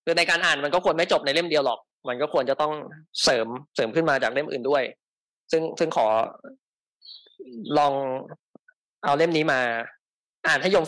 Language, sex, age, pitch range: Thai, male, 20-39, 140-200 Hz